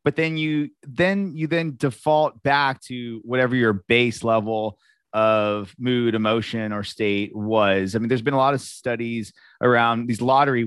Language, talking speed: English, 170 wpm